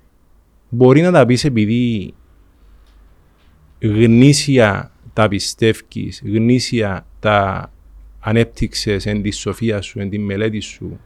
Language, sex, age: Greek, male, 30-49